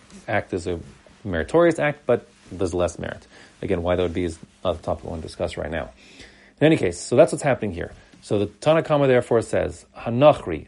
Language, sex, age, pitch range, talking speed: English, male, 40-59, 90-115 Hz, 215 wpm